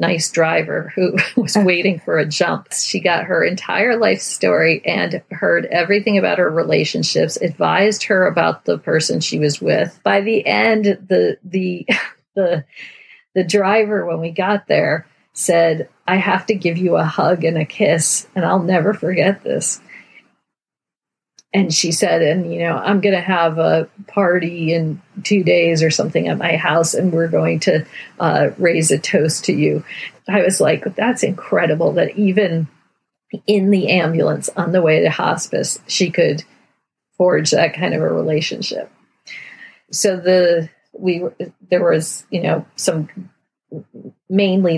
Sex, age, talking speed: female, 40-59, 155 wpm